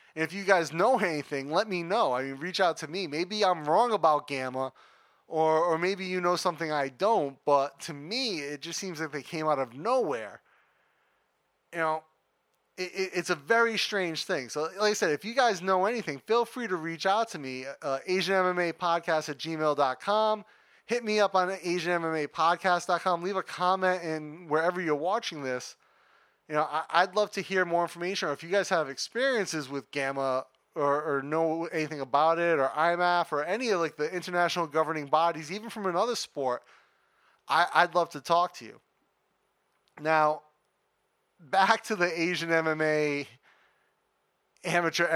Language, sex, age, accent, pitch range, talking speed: English, male, 20-39, American, 145-185 Hz, 170 wpm